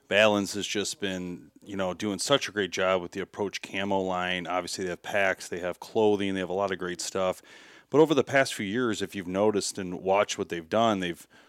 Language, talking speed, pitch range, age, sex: English, 235 wpm, 95-110 Hz, 30-49, male